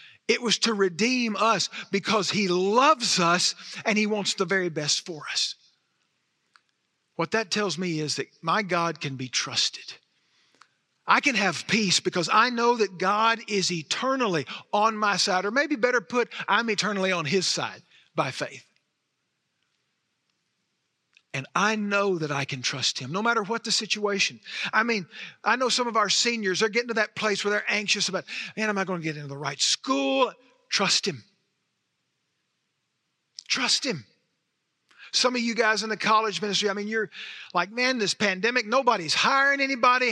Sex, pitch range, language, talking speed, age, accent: male, 180-235 Hz, English, 170 wpm, 50-69, American